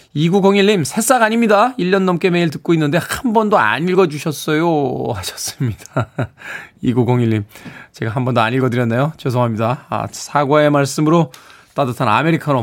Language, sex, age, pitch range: Korean, male, 20-39, 130-210 Hz